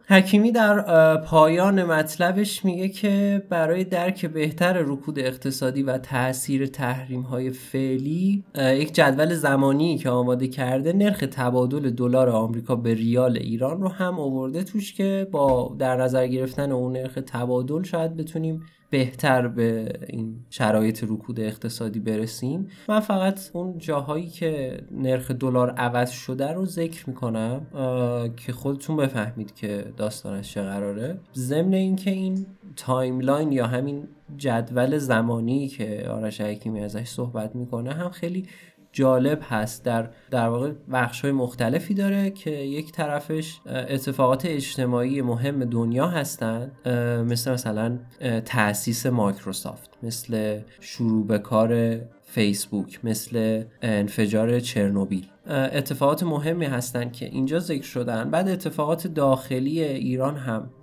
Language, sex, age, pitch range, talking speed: Persian, male, 20-39, 115-155 Hz, 120 wpm